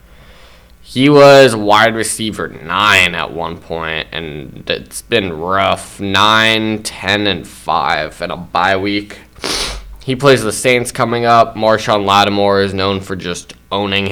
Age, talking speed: 10-29, 140 wpm